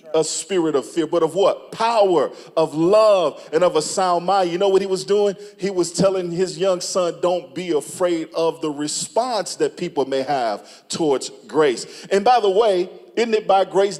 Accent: American